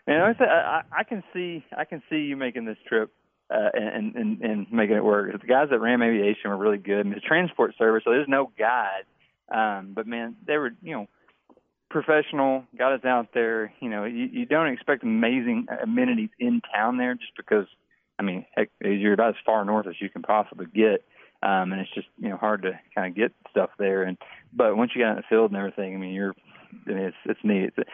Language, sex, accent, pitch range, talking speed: English, male, American, 105-135 Hz, 230 wpm